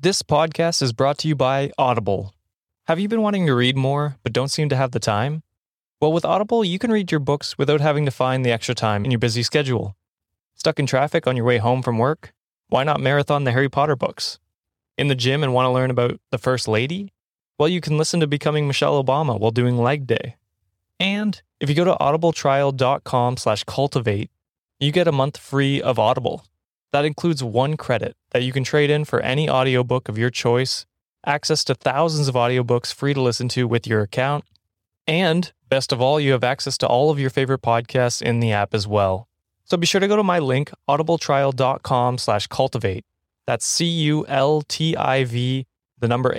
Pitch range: 120-150 Hz